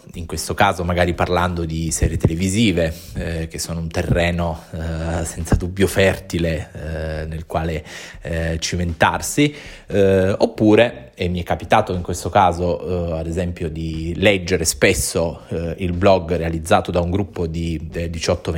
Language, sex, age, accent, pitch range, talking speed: Italian, male, 20-39, native, 85-95 Hz, 150 wpm